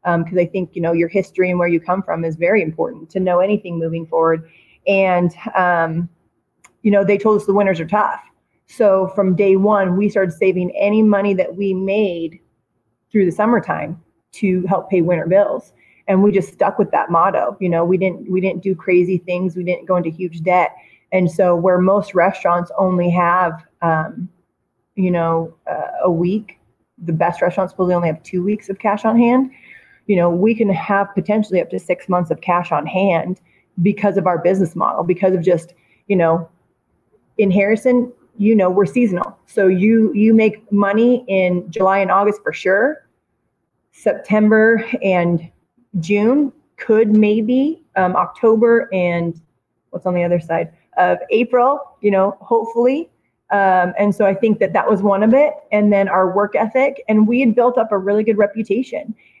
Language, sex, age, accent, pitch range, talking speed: English, female, 30-49, American, 175-210 Hz, 185 wpm